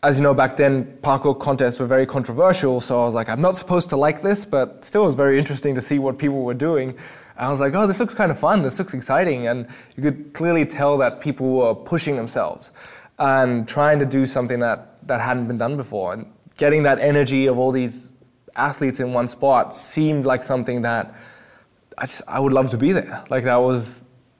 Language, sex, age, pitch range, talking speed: English, male, 20-39, 125-145 Hz, 225 wpm